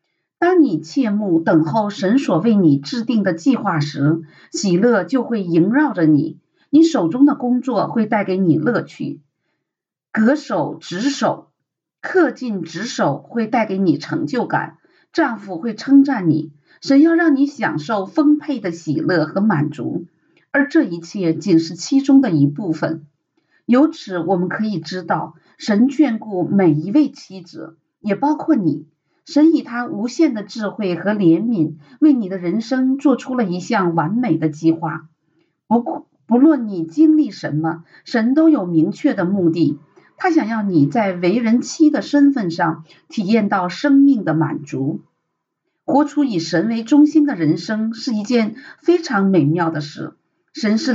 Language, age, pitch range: Chinese, 50-69, 165-275 Hz